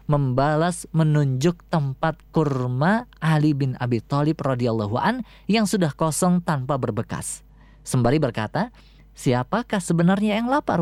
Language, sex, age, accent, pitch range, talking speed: Indonesian, female, 20-39, native, 140-195 Hz, 115 wpm